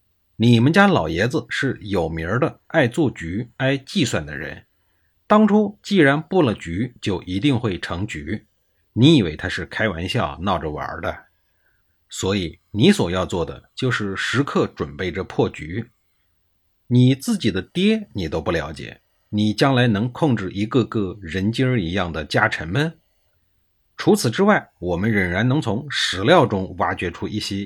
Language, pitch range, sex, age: Chinese, 90-135 Hz, male, 50-69